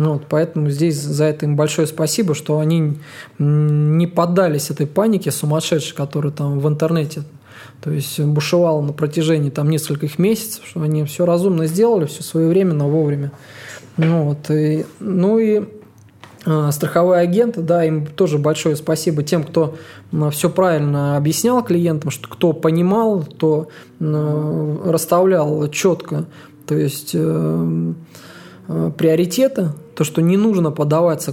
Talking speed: 130 wpm